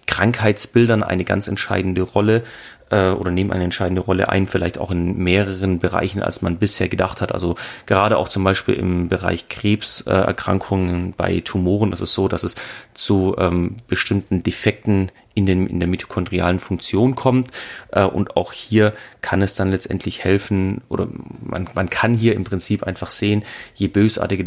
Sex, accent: male, German